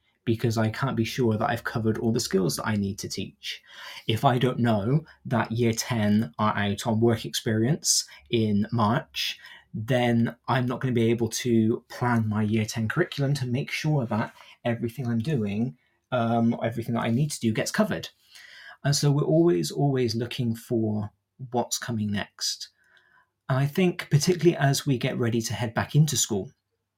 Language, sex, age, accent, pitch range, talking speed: English, male, 20-39, British, 110-125 Hz, 180 wpm